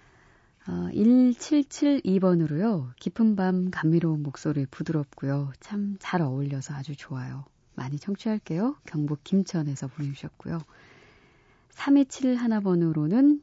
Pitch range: 145-195 Hz